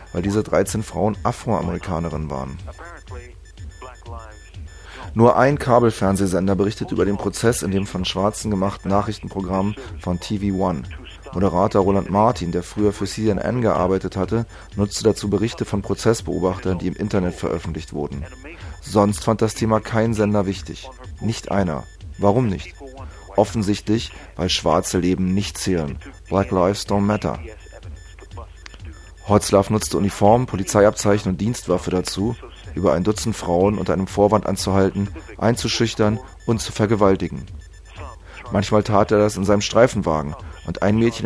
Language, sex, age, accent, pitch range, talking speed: German, male, 30-49, German, 90-105 Hz, 130 wpm